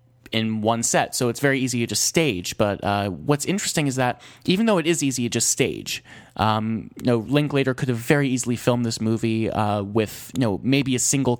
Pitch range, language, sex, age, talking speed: 110-130 Hz, English, male, 20-39, 220 wpm